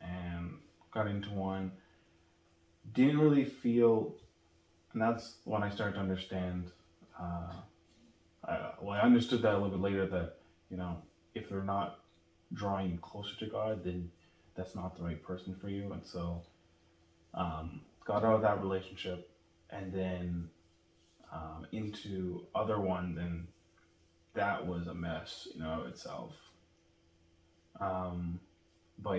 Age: 20-39